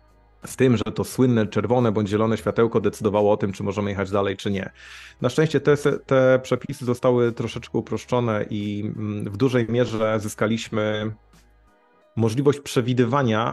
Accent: native